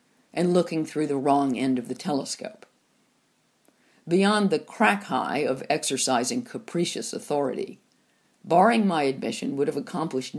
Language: English